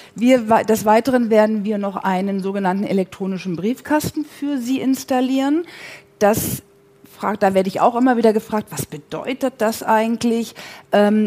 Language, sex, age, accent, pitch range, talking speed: German, female, 50-69, German, 200-250 Hz, 145 wpm